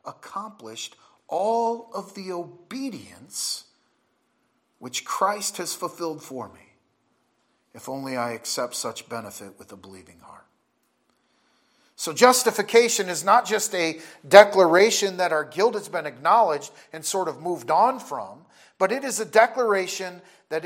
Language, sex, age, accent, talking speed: English, male, 40-59, American, 135 wpm